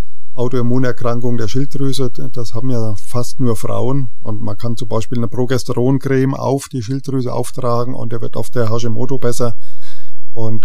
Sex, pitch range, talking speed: male, 115-130 Hz, 160 wpm